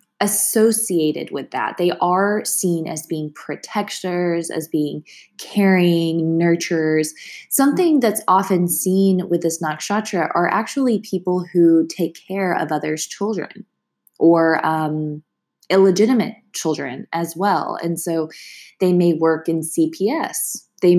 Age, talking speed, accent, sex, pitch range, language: 20-39, 125 wpm, American, female, 160-195 Hz, English